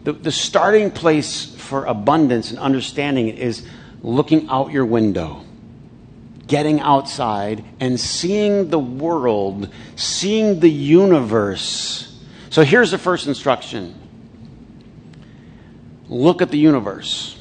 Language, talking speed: English, 105 wpm